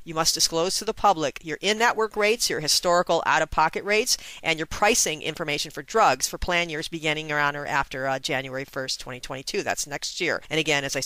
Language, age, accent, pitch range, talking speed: English, 40-59, American, 135-160 Hz, 200 wpm